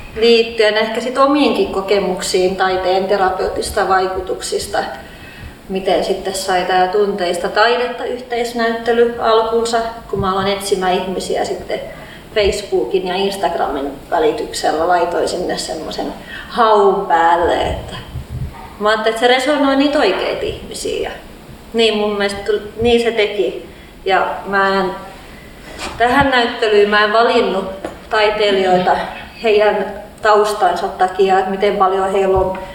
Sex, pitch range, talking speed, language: female, 190-225 Hz, 115 wpm, Finnish